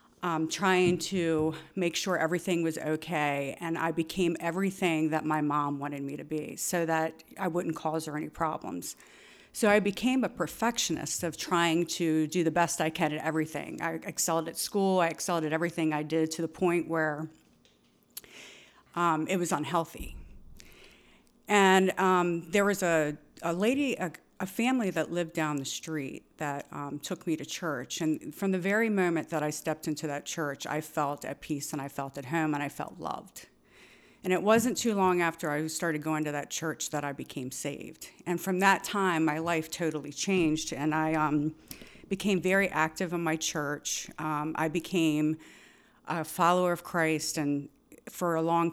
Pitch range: 155-180 Hz